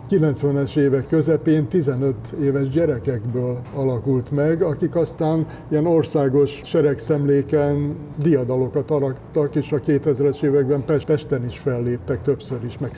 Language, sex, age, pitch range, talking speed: Hungarian, male, 60-79, 135-150 Hz, 115 wpm